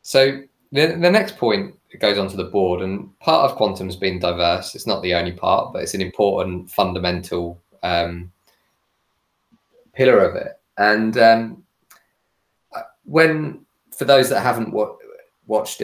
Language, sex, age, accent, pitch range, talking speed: English, male, 20-39, British, 90-120 Hz, 145 wpm